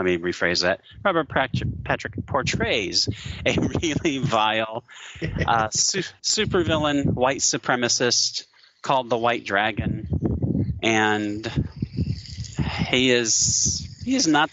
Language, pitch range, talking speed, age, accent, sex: English, 100-140 Hz, 100 wpm, 30-49, American, male